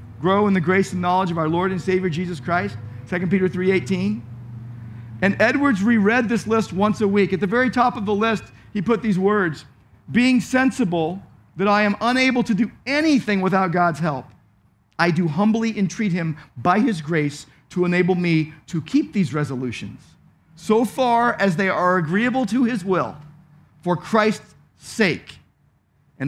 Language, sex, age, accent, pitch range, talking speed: English, male, 50-69, American, 155-205 Hz, 170 wpm